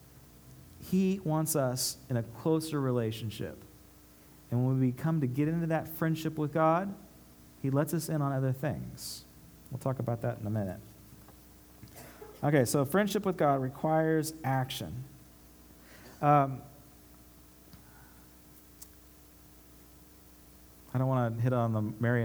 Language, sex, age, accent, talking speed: English, male, 40-59, American, 130 wpm